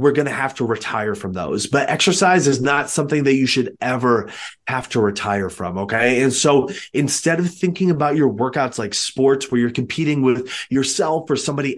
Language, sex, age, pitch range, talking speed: English, male, 20-39, 125-150 Hz, 200 wpm